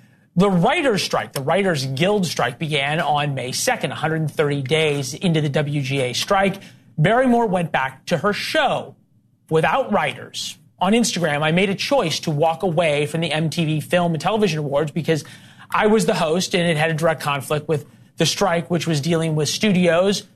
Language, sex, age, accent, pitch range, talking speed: English, male, 30-49, American, 150-185 Hz, 175 wpm